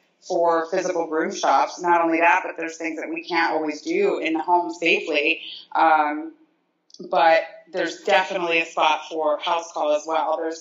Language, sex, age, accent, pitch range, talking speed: English, female, 30-49, American, 155-190 Hz, 175 wpm